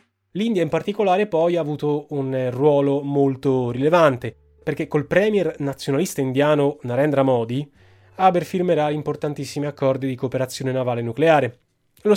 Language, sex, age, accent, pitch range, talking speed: Italian, male, 20-39, native, 120-150 Hz, 130 wpm